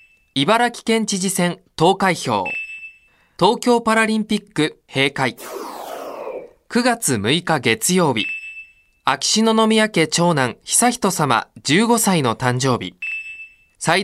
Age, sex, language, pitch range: 20-39, male, Japanese, 150-220 Hz